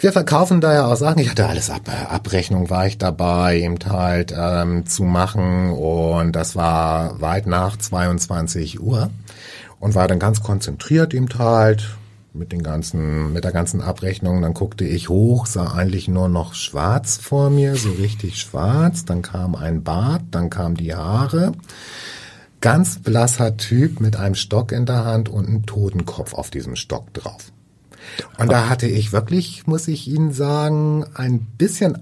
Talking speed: 165 wpm